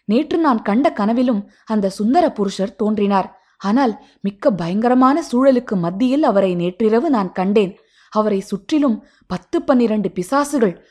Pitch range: 200-265 Hz